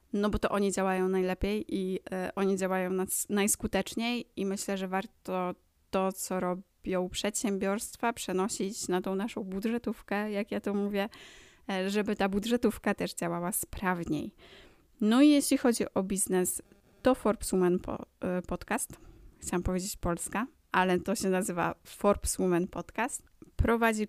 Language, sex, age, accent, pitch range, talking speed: Polish, female, 20-39, native, 185-220 Hz, 135 wpm